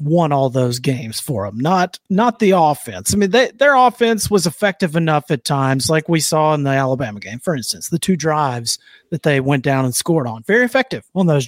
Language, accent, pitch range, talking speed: English, American, 135-175 Hz, 220 wpm